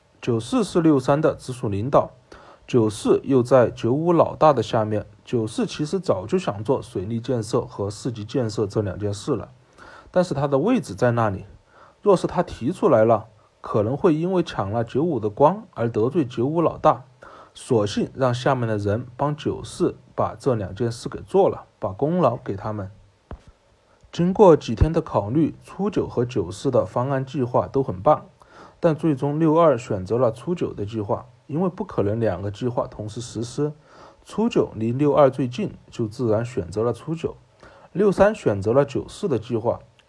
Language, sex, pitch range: Chinese, male, 110-150 Hz